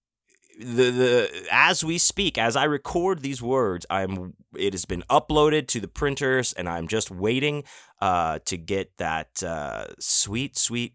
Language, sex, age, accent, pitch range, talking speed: English, male, 30-49, American, 95-125 Hz, 160 wpm